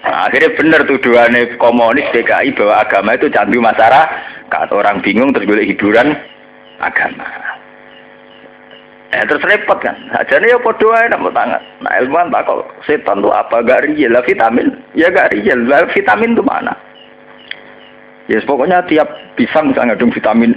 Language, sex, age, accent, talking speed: Indonesian, male, 50-69, native, 150 wpm